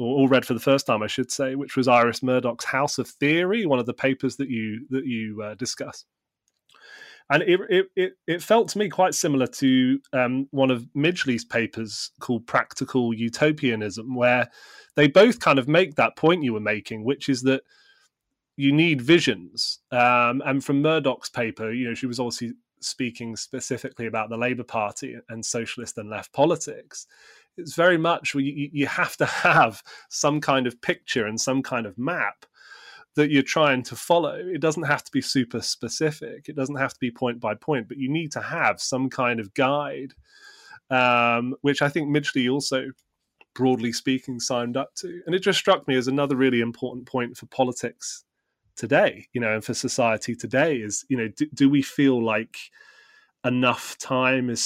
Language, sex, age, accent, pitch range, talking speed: English, male, 30-49, British, 120-150 Hz, 185 wpm